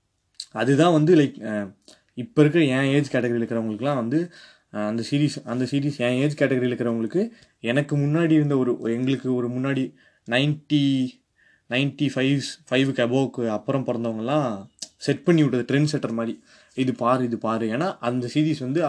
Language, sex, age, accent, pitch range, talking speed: Tamil, male, 20-39, native, 115-140 Hz, 145 wpm